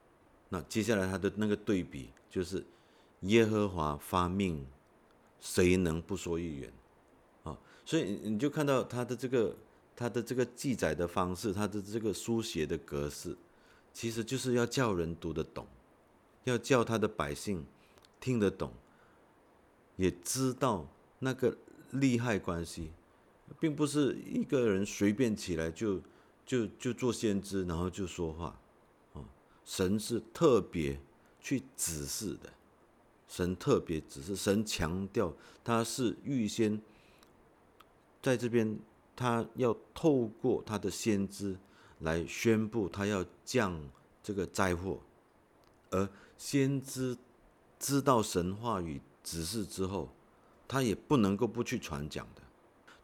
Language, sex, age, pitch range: Chinese, male, 50-69, 85-115 Hz